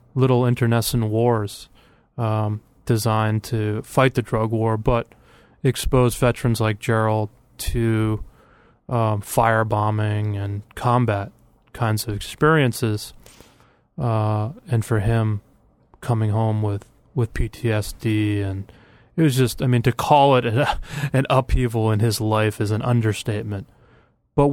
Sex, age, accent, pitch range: male, 20-39, American, 110-120 Hz